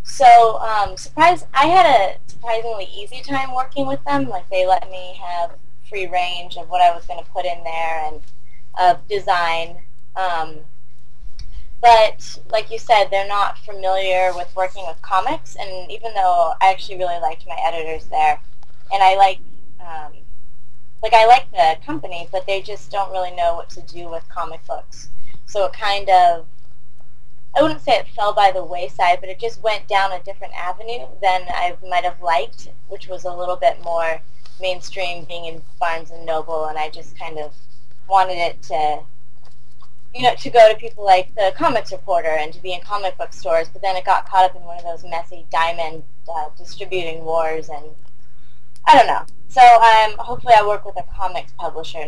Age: 20-39